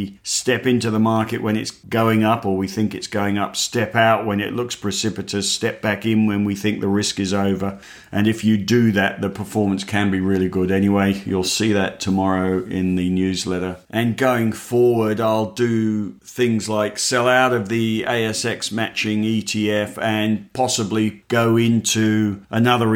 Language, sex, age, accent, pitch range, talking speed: English, male, 50-69, British, 100-115 Hz, 180 wpm